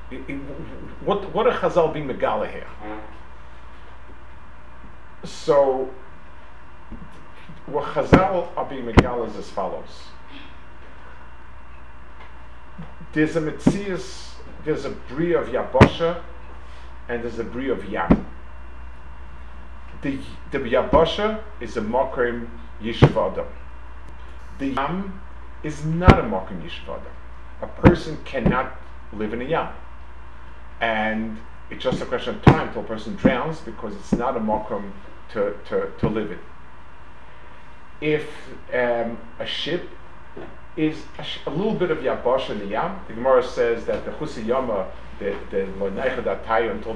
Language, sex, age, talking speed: English, male, 50-69, 125 wpm